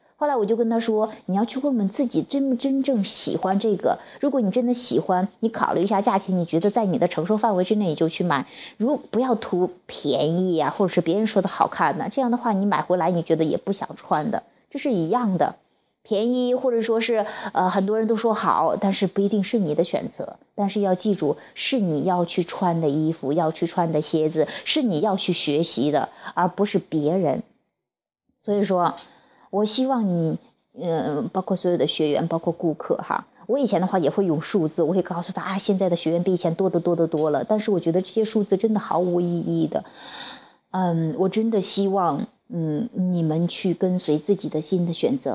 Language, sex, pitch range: Chinese, female, 165-215 Hz